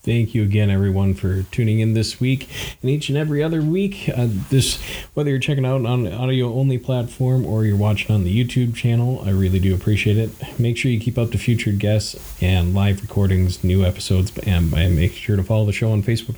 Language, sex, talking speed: English, male, 215 wpm